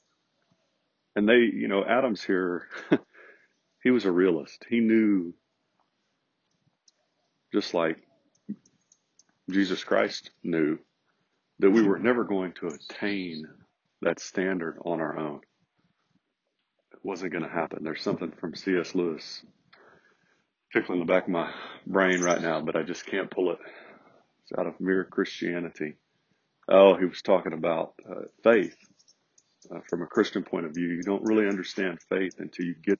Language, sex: English, male